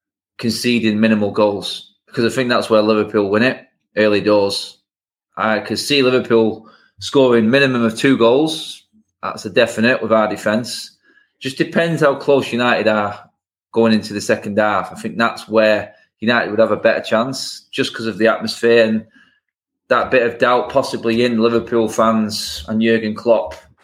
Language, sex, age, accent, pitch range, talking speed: English, male, 20-39, British, 105-125 Hz, 165 wpm